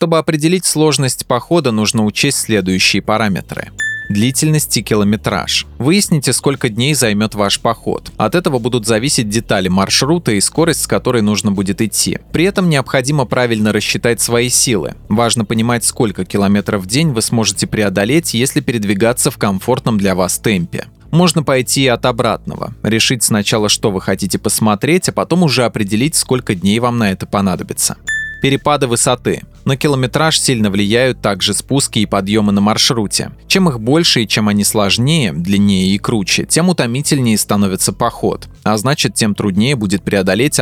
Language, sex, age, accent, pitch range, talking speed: Russian, male, 20-39, native, 105-140 Hz, 155 wpm